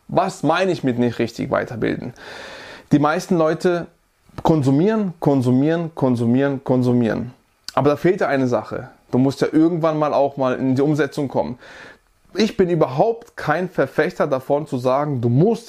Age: 20-39